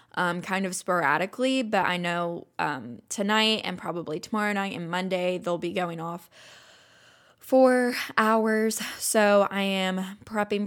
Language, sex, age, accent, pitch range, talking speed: English, female, 10-29, American, 175-210 Hz, 140 wpm